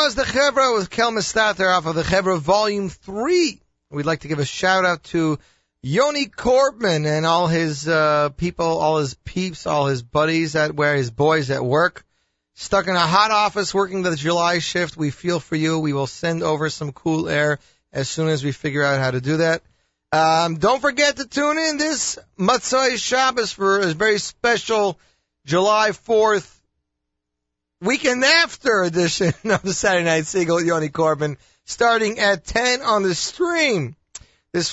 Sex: male